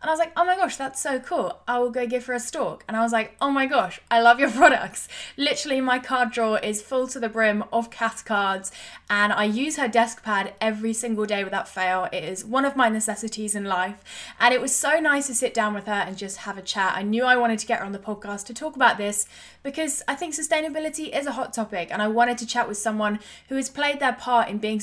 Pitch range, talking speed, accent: 215-270 Hz, 265 wpm, British